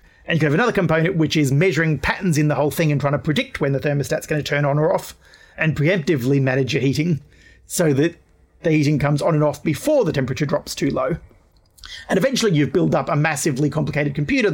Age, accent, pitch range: 40-59, Australian, 135-165 Hz